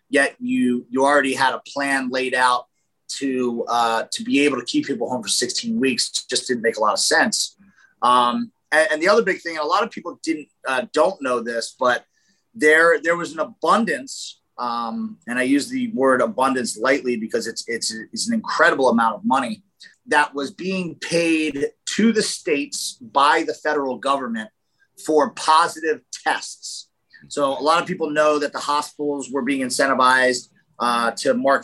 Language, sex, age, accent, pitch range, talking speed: English, male, 30-49, American, 125-175 Hz, 185 wpm